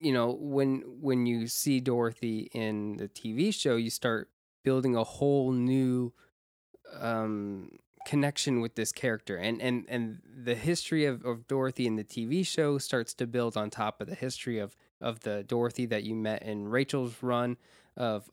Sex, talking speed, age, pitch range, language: male, 175 wpm, 20-39, 110-135 Hz, English